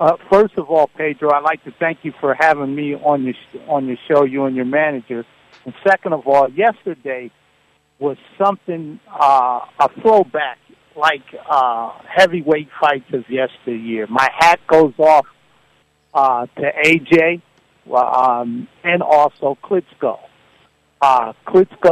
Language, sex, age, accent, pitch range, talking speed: English, male, 60-79, American, 130-165 Hz, 140 wpm